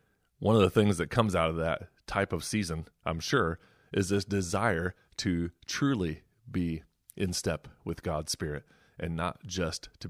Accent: American